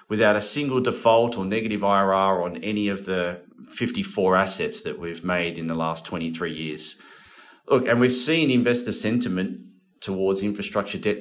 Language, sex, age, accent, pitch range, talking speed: English, male, 30-49, Australian, 95-120 Hz, 160 wpm